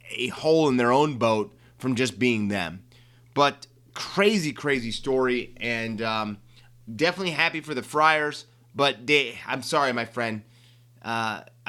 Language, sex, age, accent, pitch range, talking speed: English, male, 30-49, American, 120-160 Hz, 145 wpm